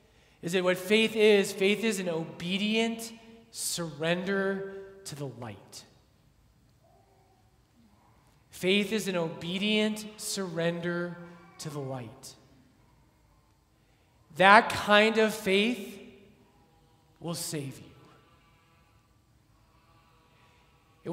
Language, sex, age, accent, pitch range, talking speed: English, male, 30-49, American, 145-205 Hz, 80 wpm